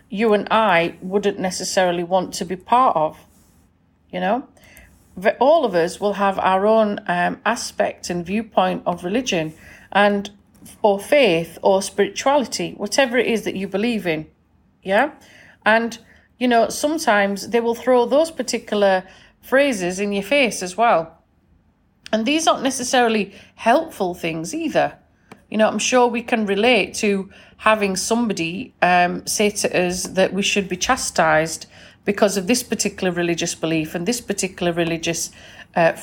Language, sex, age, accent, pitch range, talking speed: English, female, 40-59, British, 180-235 Hz, 150 wpm